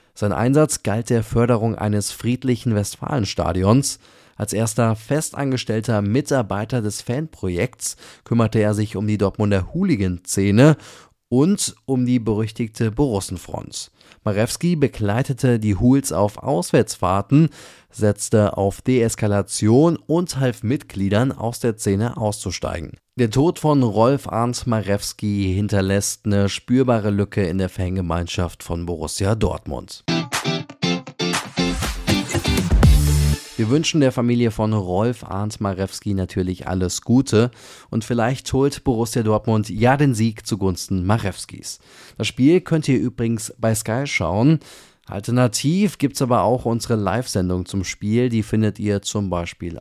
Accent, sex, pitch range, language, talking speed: German, male, 100-130 Hz, German, 120 wpm